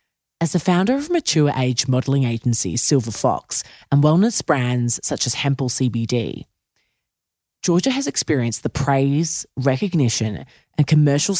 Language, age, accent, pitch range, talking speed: English, 30-49, Australian, 120-160 Hz, 130 wpm